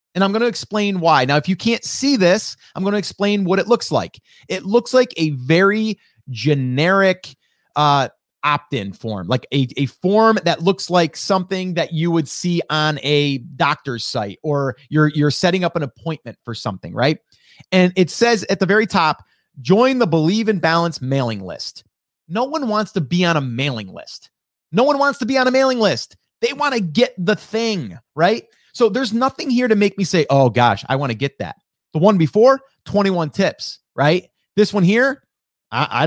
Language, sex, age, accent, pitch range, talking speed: English, male, 30-49, American, 140-205 Hz, 200 wpm